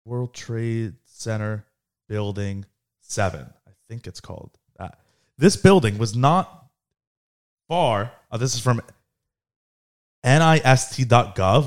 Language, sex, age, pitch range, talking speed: English, male, 30-49, 105-125 Hz, 105 wpm